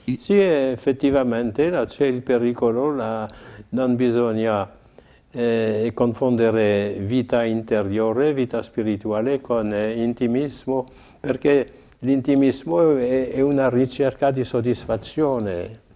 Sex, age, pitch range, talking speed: male, 60-79, 105-130 Hz, 90 wpm